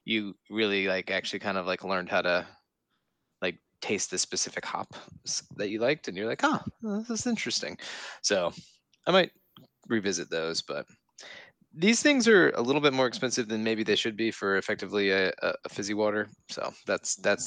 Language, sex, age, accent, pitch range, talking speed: English, male, 20-39, American, 100-130 Hz, 180 wpm